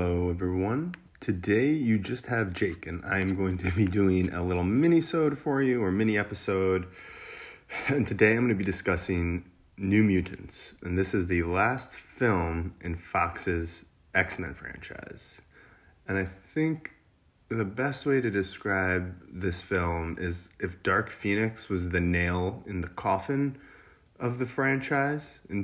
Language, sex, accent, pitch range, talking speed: English, male, American, 90-105 Hz, 145 wpm